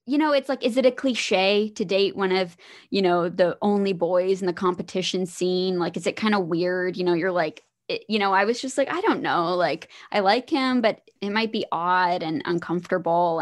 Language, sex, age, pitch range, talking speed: English, female, 20-39, 185-245 Hz, 235 wpm